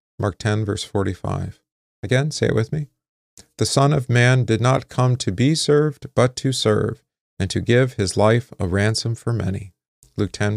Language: English